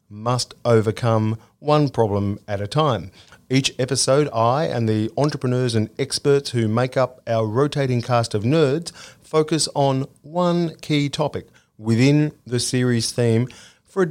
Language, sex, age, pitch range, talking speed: English, male, 40-59, 110-145 Hz, 145 wpm